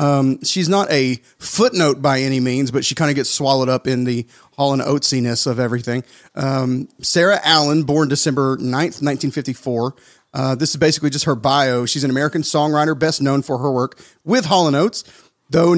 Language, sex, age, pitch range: English, male, 40-59, 130-155 Hz